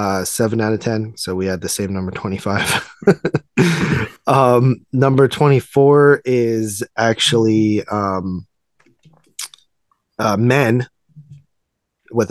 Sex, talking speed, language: male, 100 wpm, English